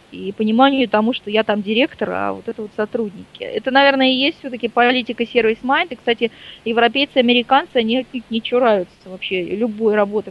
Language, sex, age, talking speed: Russian, female, 20-39, 170 wpm